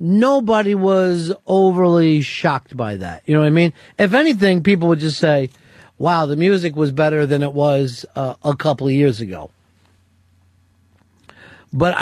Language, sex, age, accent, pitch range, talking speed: English, male, 50-69, American, 130-185 Hz, 160 wpm